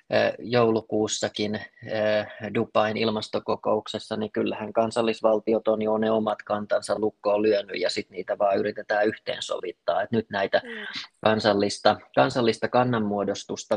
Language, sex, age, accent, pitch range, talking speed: Finnish, male, 30-49, native, 105-110 Hz, 110 wpm